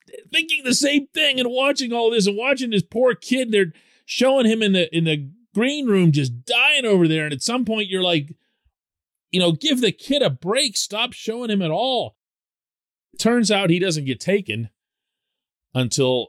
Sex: male